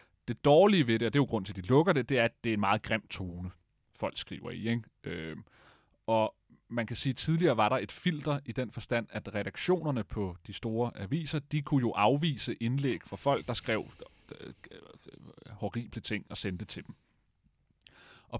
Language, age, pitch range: Danish, 30-49, 105-140 Hz